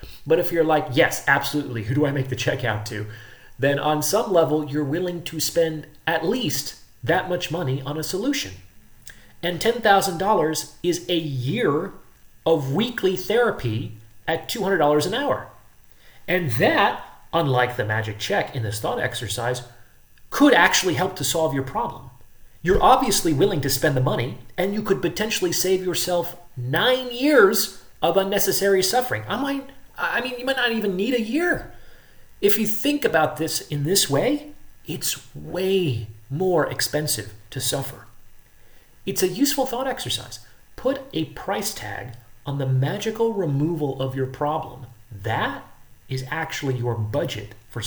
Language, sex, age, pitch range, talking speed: English, male, 30-49, 125-180 Hz, 155 wpm